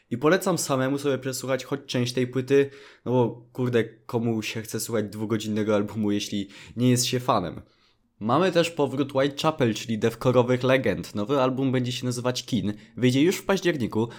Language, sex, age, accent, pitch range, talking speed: Polish, male, 20-39, native, 110-140 Hz, 175 wpm